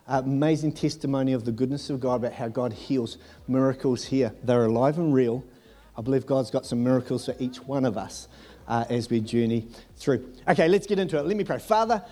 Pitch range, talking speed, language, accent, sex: 145-200 Hz, 215 wpm, English, Australian, male